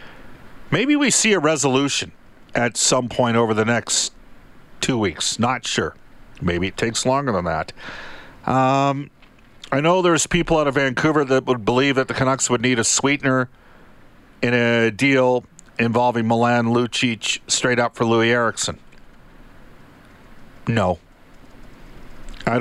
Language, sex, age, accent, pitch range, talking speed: English, male, 50-69, American, 105-125 Hz, 140 wpm